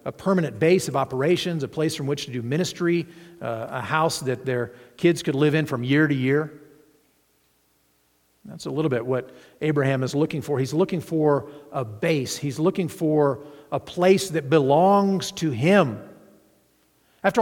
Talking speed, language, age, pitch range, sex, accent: 170 wpm, English, 50-69, 115-155 Hz, male, American